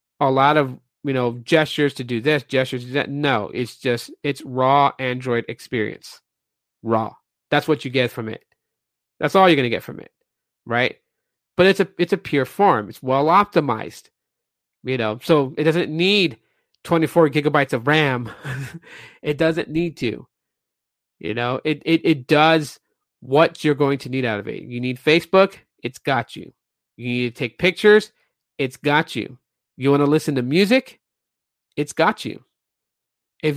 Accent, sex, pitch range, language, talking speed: American, male, 130-170 Hz, English, 175 wpm